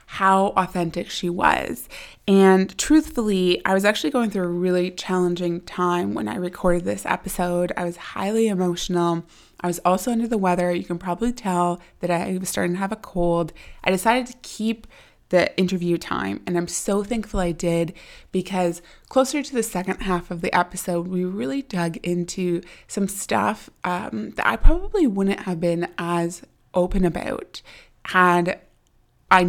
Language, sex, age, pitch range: English, female, 20-39, 175-195 Hz